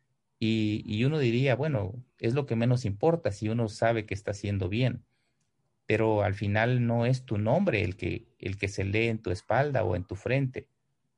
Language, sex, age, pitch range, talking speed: Spanish, male, 40-59, 100-125 Hz, 200 wpm